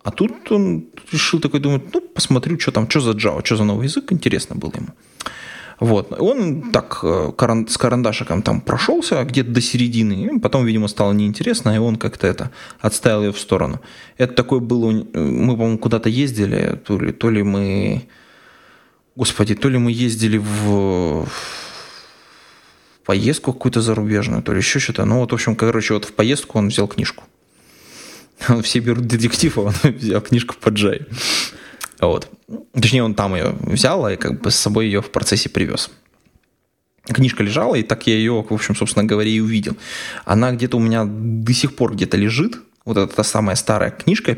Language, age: Russian, 20-39